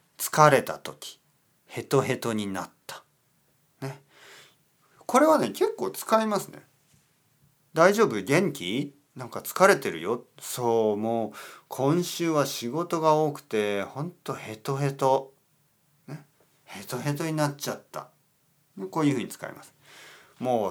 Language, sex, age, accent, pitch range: Japanese, male, 40-59, native, 125-165 Hz